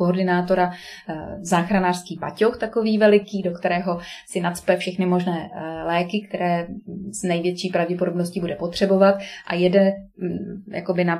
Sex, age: female, 20-39